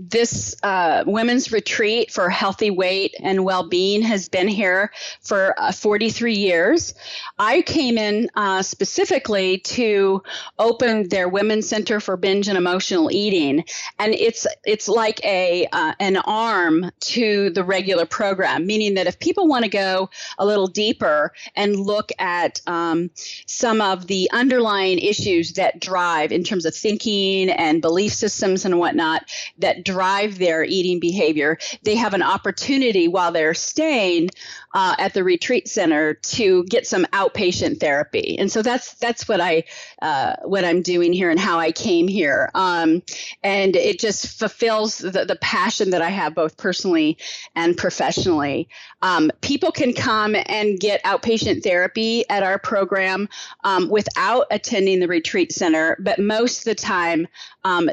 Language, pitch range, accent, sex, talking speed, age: English, 180-235 Hz, American, female, 155 wpm, 30-49